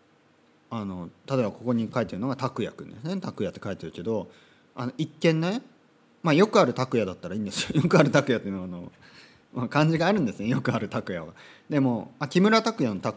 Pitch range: 105-160 Hz